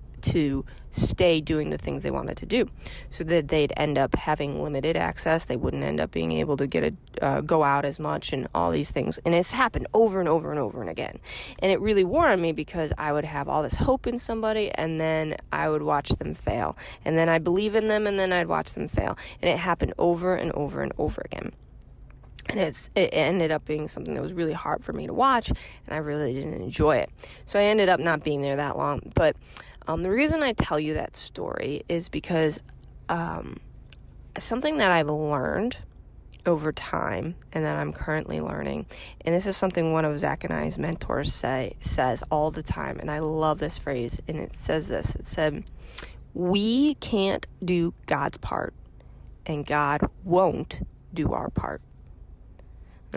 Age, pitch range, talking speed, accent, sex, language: 20-39, 140-180 Hz, 200 wpm, American, female, English